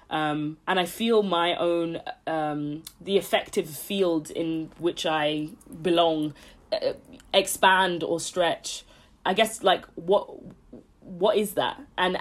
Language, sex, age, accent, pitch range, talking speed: English, female, 20-39, British, 165-195 Hz, 130 wpm